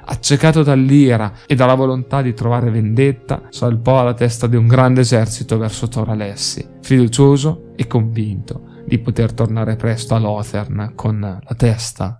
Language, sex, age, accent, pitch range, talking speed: Italian, male, 20-39, native, 110-135 Hz, 145 wpm